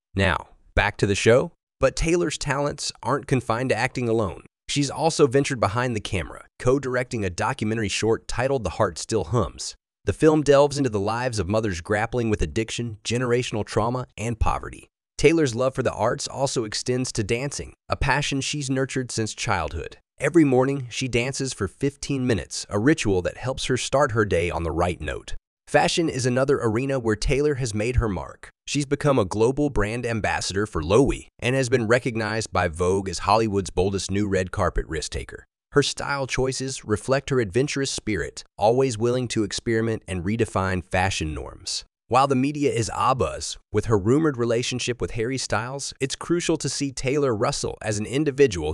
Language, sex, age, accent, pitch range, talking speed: English, male, 30-49, American, 105-135 Hz, 180 wpm